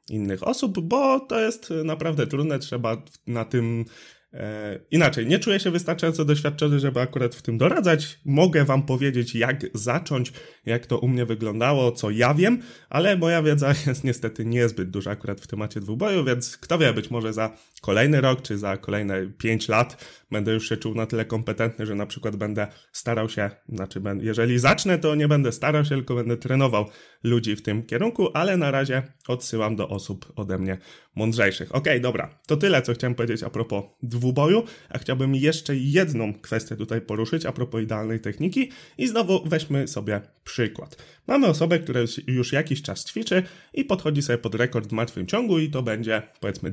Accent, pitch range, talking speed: native, 110-155 Hz, 180 wpm